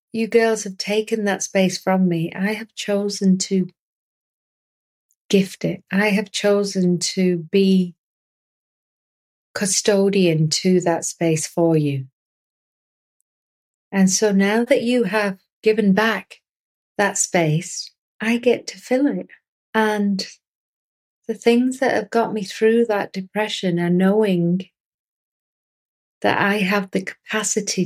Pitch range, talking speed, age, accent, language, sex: 175-205 Hz, 125 wpm, 30-49, British, English, female